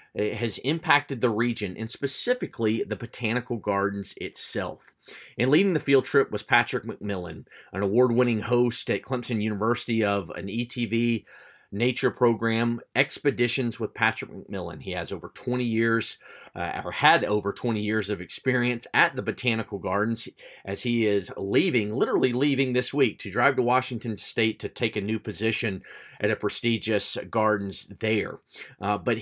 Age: 40-59